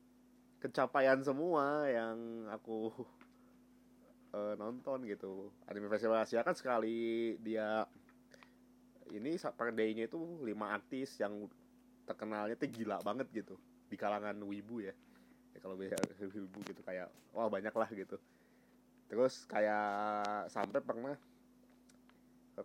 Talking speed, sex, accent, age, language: 115 wpm, male, native, 20-39, Indonesian